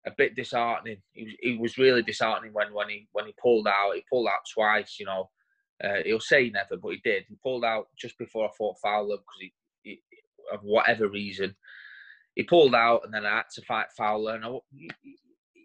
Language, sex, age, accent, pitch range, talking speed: English, male, 20-39, British, 110-145 Hz, 210 wpm